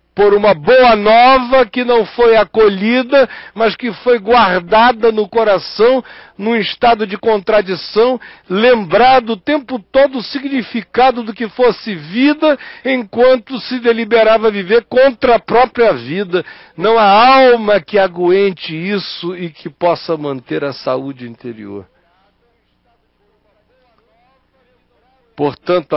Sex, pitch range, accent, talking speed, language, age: male, 165-240 Hz, Brazilian, 115 wpm, Portuguese, 60-79